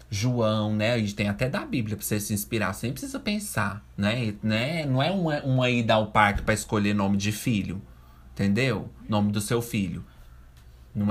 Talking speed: 185 wpm